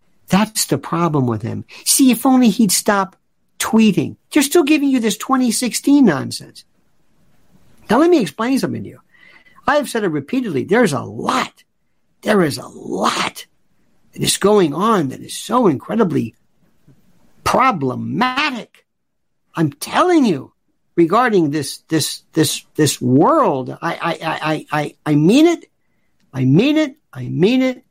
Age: 50-69